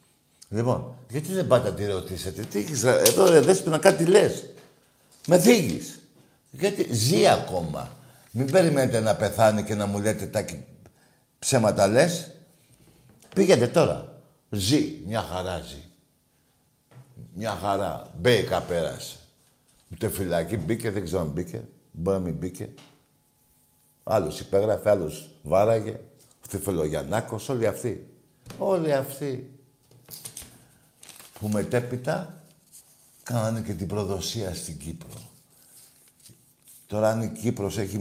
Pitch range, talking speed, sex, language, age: 100-140 Hz, 120 wpm, male, Greek, 60-79